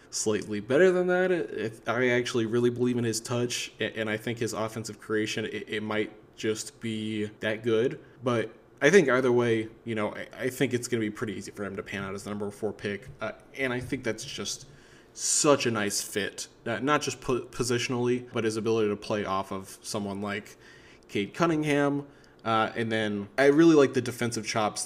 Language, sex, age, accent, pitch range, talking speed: English, male, 20-39, American, 110-125 Hz, 195 wpm